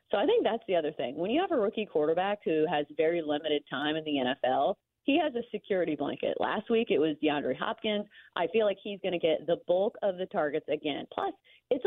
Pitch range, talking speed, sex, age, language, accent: 155-215 Hz, 240 wpm, female, 30-49, English, American